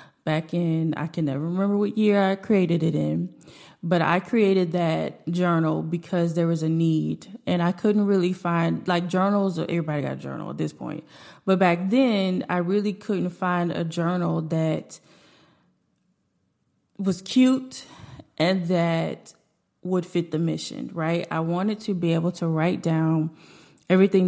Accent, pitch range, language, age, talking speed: American, 160-190 Hz, English, 20-39, 160 wpm